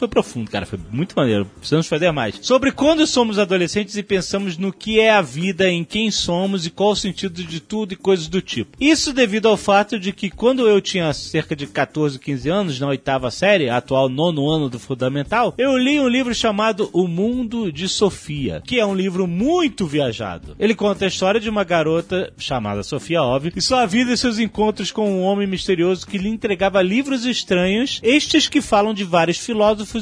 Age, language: 30-49, Portuguese